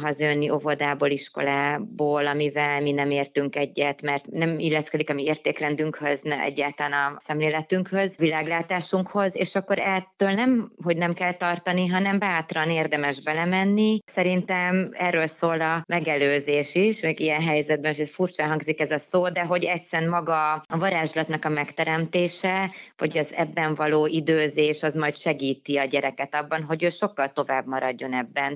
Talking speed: 145 wpm